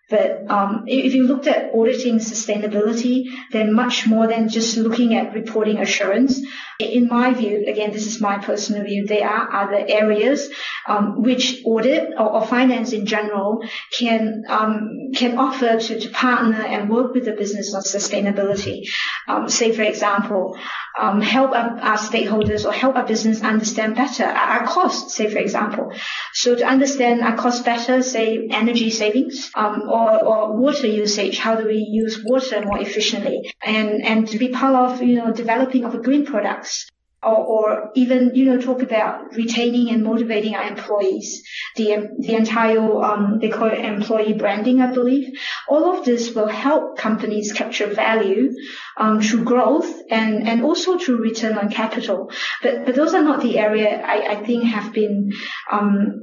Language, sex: English, female